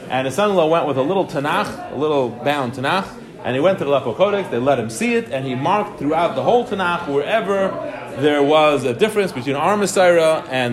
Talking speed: 220 wpm